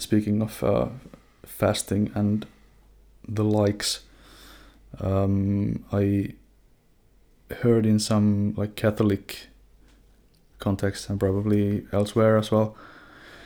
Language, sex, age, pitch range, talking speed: English, male, 20-39, 100-110 Hz, 90 wpm